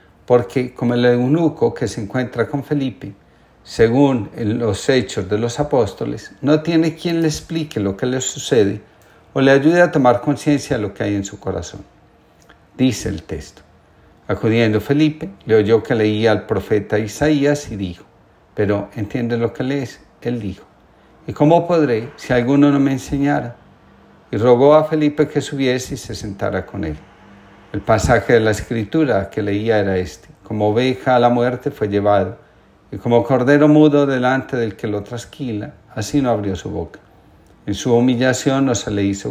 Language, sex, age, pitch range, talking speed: Spanish, male, 50-69, 100-140 Hz, 175 wpm